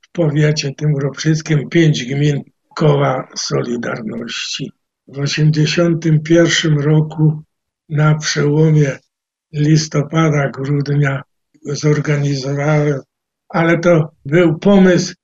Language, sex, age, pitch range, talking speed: Polish, male, 60-79, 150-175 Hz, 80 wpm